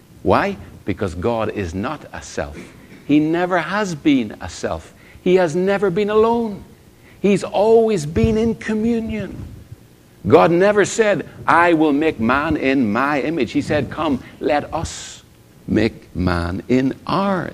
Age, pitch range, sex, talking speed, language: 60-79, 95-145 Hz, male, 145 wpm, English